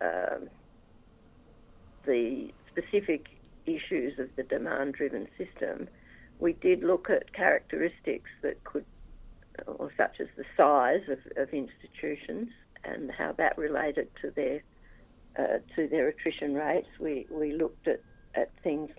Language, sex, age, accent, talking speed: English, female, 50-69, Australian, 125 wpm